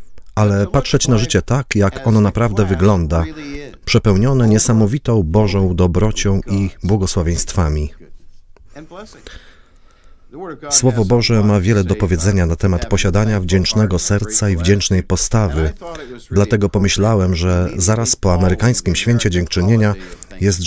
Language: Polish